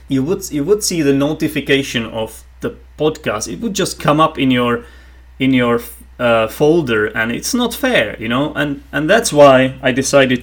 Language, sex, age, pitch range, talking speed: English, male, 30-49, 115-165 Hz, 190 wpm